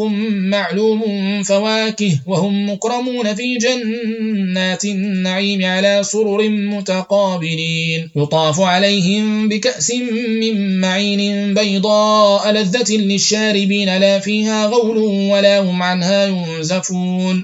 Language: Arabic